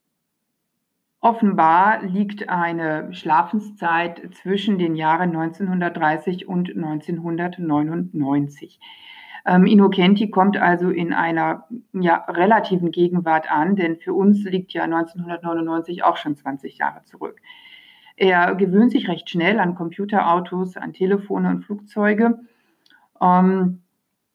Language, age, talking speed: German, 50-69, 105 wpm